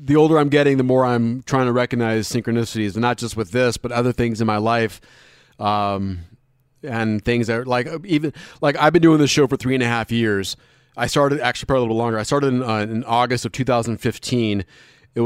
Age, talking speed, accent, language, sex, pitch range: 30-49, 225 wpm, American, English, male, 115-135 Hz